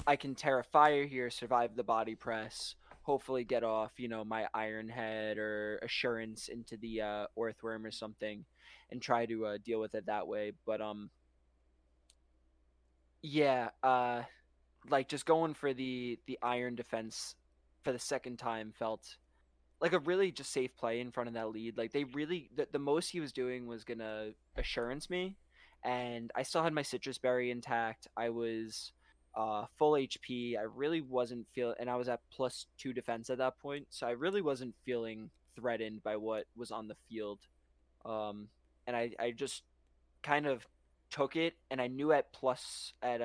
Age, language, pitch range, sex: 20-39, English, 110-130 Hz, male